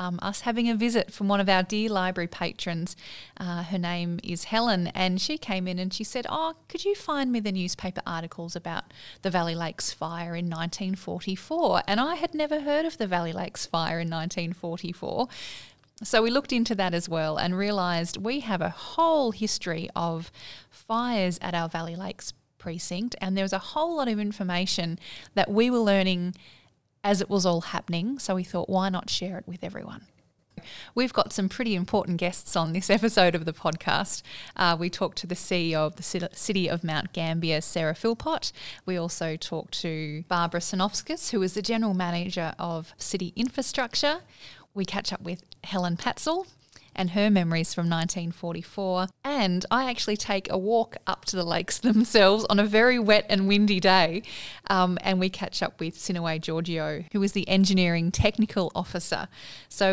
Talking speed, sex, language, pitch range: 180 wpm, female, English, 175-220 Hz